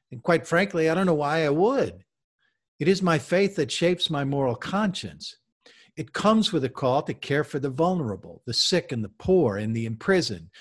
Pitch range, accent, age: 115-160 Hz, American, 50-69